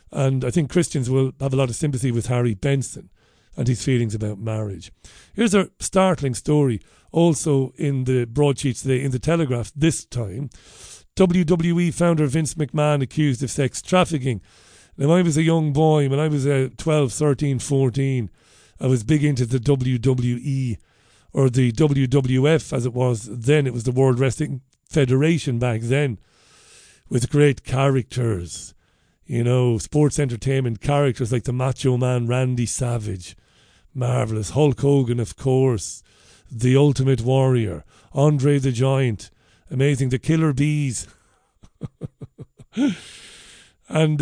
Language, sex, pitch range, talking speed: English, male, 120-150 Hz, 140 wpm